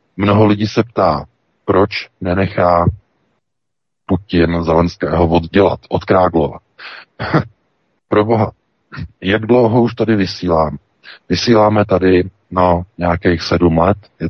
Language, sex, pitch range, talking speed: Czech, male, 90-120 Hz, 105 wpm